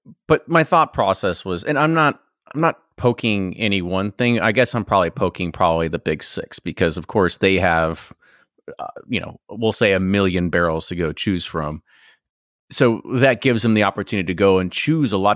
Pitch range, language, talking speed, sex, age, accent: 95-125 Hz, English, 205 wpm, male, 30-49, American